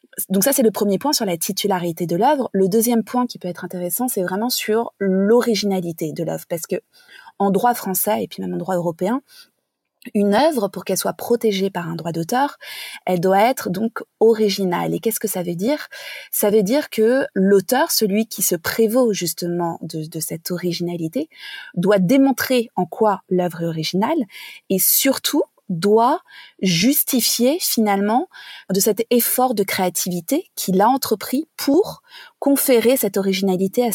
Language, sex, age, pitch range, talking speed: French, female, 20-39, 185-245 Hz, 170 wpm